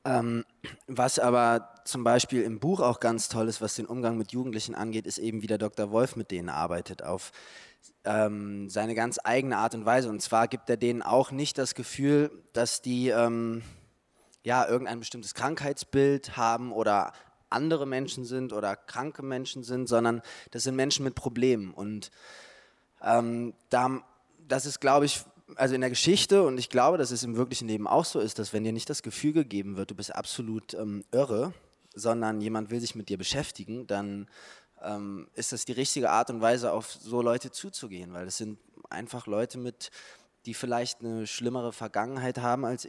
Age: 20-39